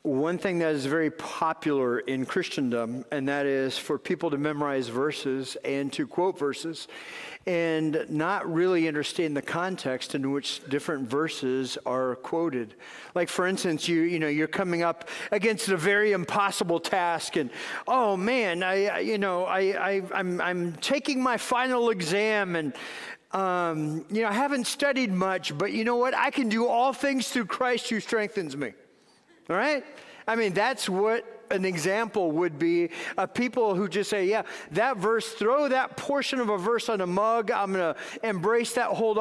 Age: 50-69